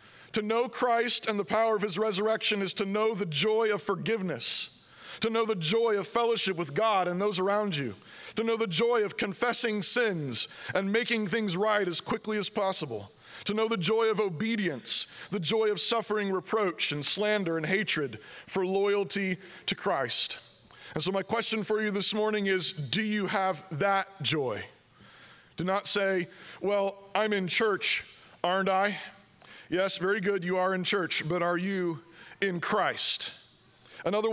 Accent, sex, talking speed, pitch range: American, male, 170 wpm, 185-215 Hz